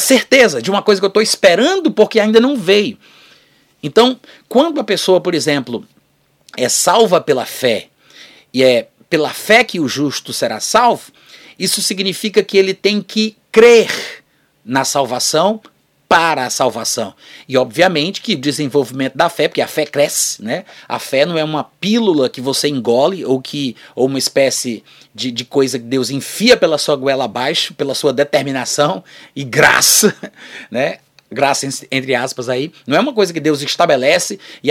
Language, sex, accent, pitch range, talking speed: Portuguese, male, Brazilian, 140-195 Hz, 165 wpm